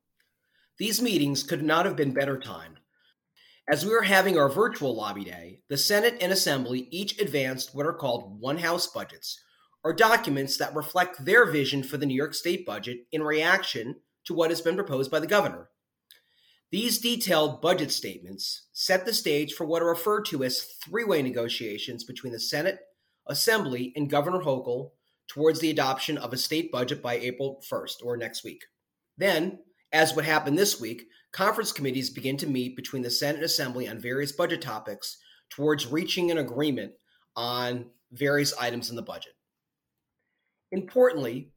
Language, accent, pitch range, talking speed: English, American, 130-175 Hz, 165 wpm